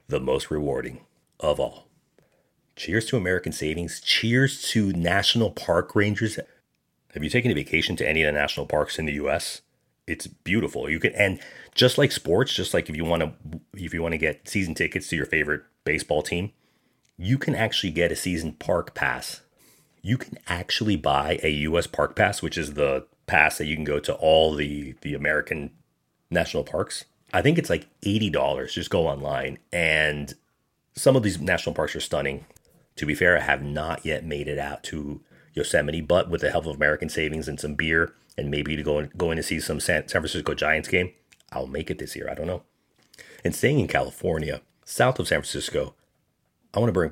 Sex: male